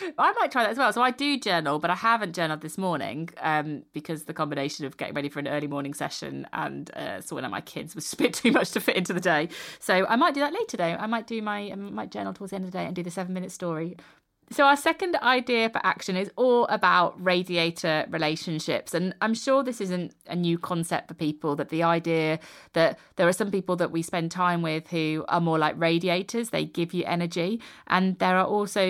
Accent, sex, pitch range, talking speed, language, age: British, female, 160-200 Hz, 245 wpm, English, 30-49